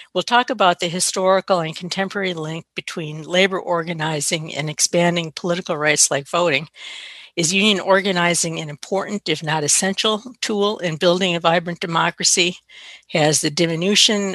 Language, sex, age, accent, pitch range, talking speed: English, female, 60-79, American, 165-185 Hz, 140 wpm